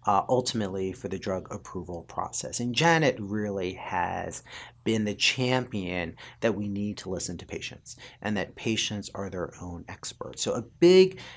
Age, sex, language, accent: 40-59, male, English, American